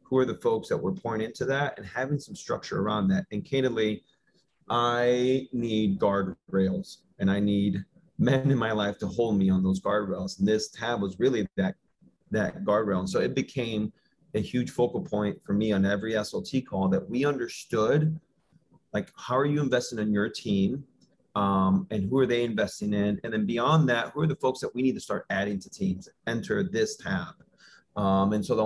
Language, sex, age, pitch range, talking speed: English, male, 30-49, 100-130 Hz, 200 wpm